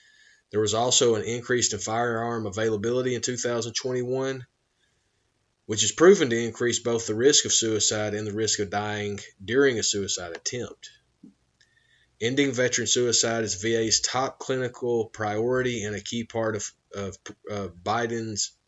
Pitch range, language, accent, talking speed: 105-125 Hz, English, American, 145 wpm